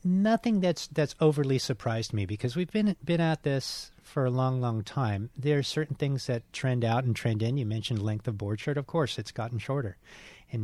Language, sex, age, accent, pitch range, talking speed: English, male, 40-59, American, 105-130 Hz, 220 wpm